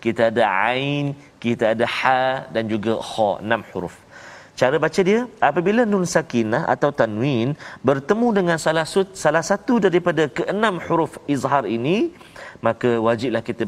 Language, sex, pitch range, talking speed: Malayalam, male, 120-180 Hz, 135 wpm